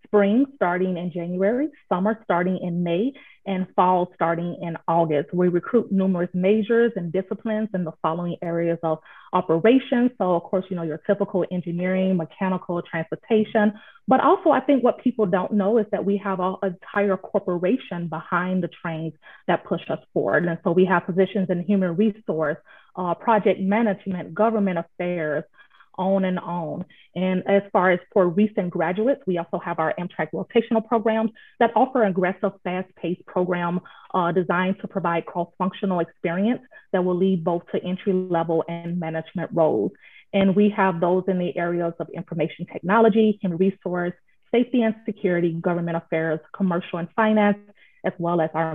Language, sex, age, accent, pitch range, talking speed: English, female, 30-49, American, 170-205 Hz, 160 wpm